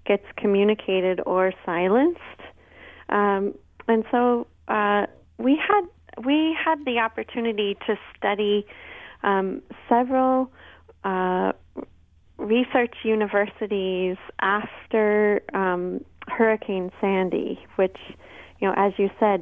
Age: 30-49